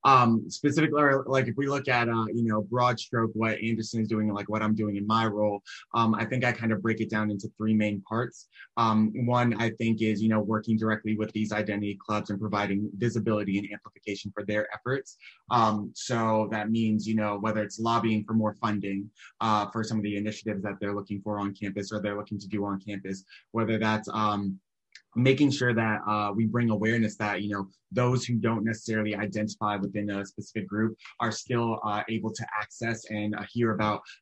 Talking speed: 210 wpm